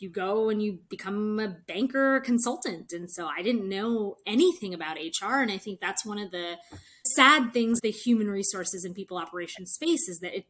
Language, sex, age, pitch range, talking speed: English, female, 20-39, 185-250 Hz, 200 wpm